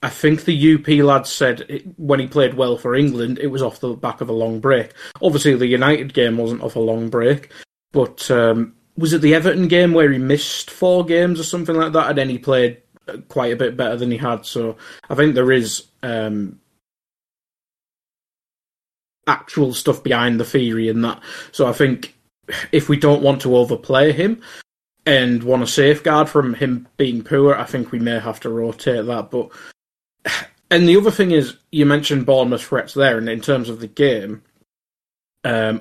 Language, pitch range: English, 115-145 Hz